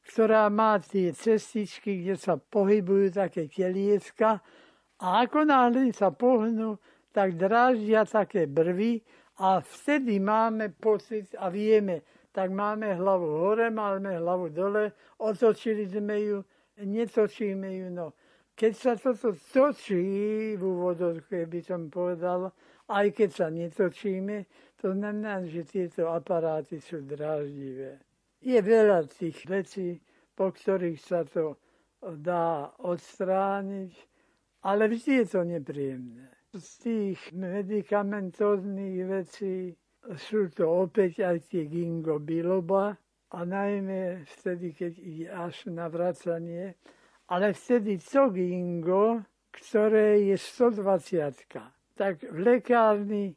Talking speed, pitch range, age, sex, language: 110 wpm, 175-215 Hz, 60-79, male, Slovak